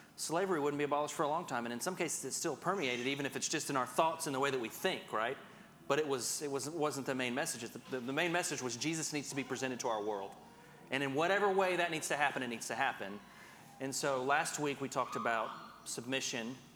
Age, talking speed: 30-49, 250 wpm